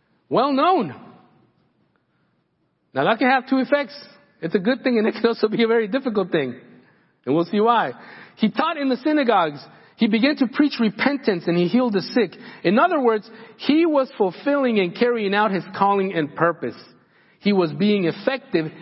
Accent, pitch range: American, 160-225 Hz